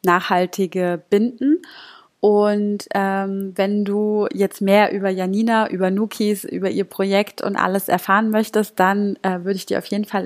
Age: 20-39